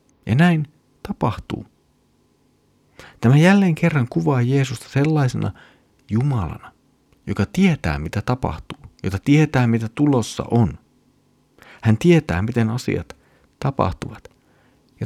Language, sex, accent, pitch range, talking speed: Finnish, male, native, 90-120 Hz, 100 wpm